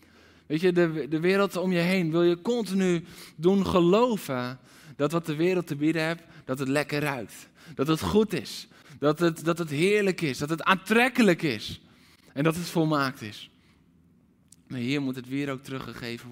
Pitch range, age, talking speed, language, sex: 130-175 Hz, 20-39, 185 wpm, Dutch, male